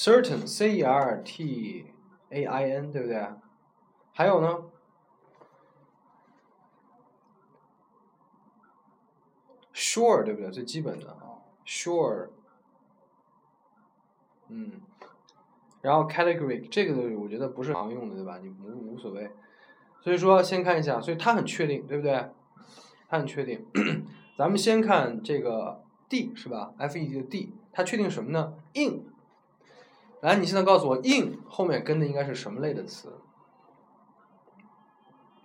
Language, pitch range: Chinese, 145-205 Hz